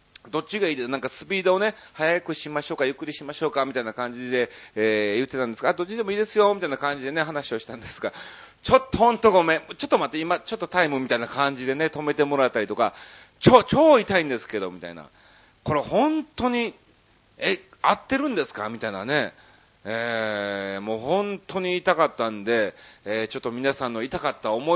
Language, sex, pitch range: Japanese, male, 120-195 Hz